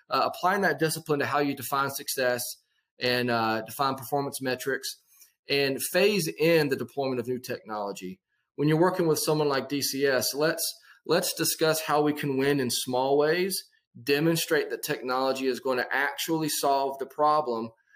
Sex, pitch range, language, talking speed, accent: male, 125-155 Hz, English, 165 wpm, American